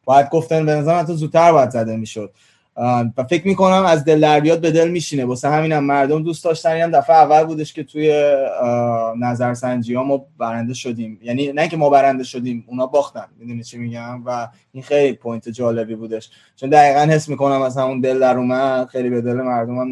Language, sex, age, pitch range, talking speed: Persian, male, 20-39, 115-145 Hz, 195 wpm